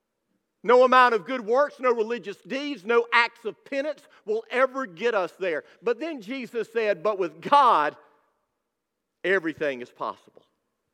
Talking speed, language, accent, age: 150 wpm, English, American, 50-69